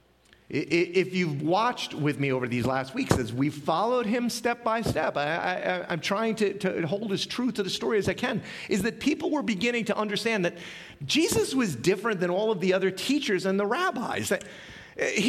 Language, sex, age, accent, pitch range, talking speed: English, male, 40-59, American, 140-225 Hz, 210 wpm